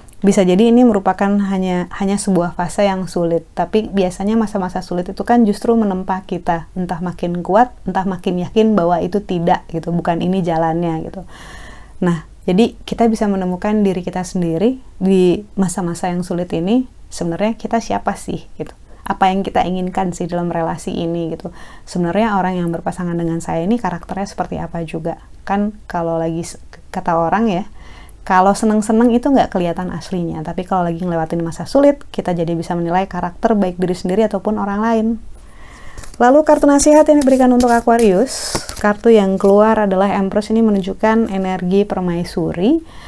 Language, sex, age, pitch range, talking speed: Indonesian, female, 20-39, 175-210 Hz, 160 wpm